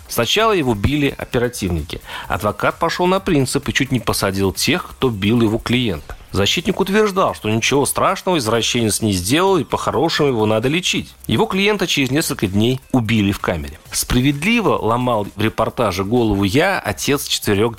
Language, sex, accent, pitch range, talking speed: Russian, male, native, 105-145 Hz, 155 wpm